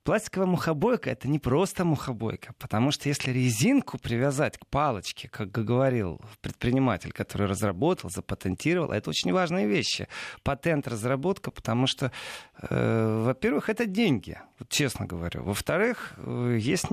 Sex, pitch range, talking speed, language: male, 115-160 Hz, 125 wpm, Russian